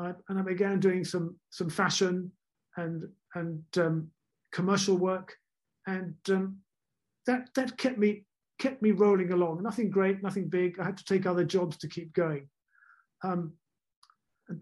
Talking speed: 155 wpm